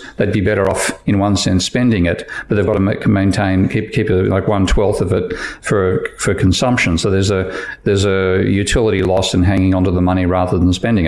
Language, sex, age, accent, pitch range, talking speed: English, male, 50-69, Australian, 95-110 Hz, 220 wpm